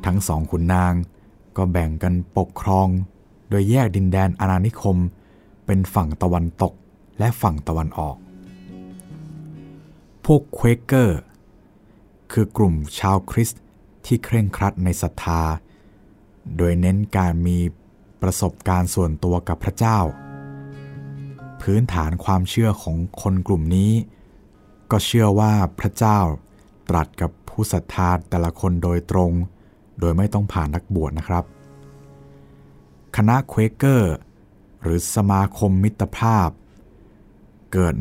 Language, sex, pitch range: Thai, male, 85-105 Hz